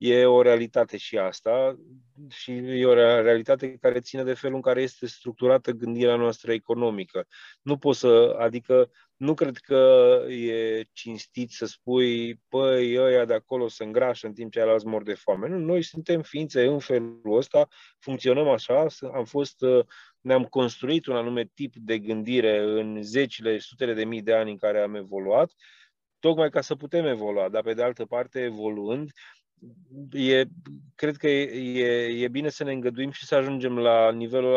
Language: Romanian